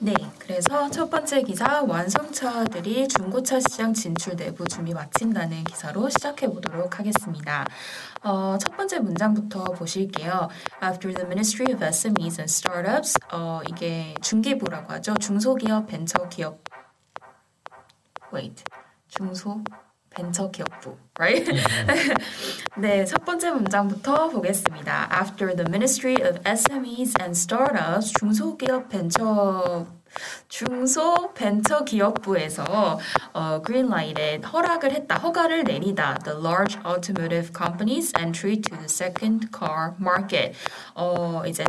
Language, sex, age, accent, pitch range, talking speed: English, female, 20-39, Korean, 175-250 Hz, 105 wpm